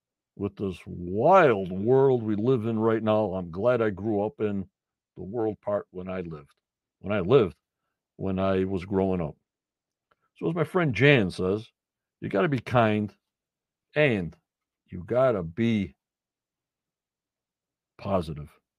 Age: 60-79